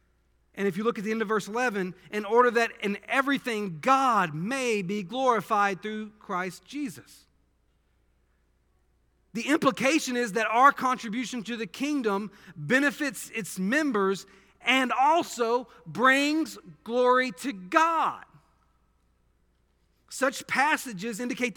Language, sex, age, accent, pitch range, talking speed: English, male, 40-59, American, 185-255 Hz, 120 wpm